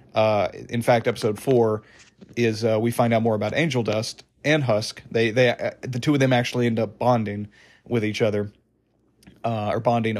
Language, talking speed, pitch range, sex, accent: English, 195 wpm, 110-125 Hz, male, American